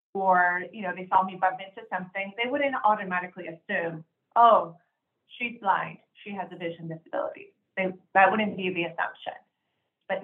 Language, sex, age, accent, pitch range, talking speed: English, female, 30-49, American, 170-215 Hz, 165 wpm